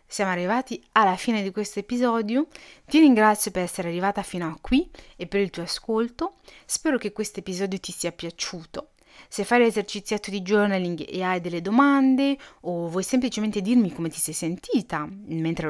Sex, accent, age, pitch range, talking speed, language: female, native, 30-49, 175-230 Hz, 170 wpm, Italian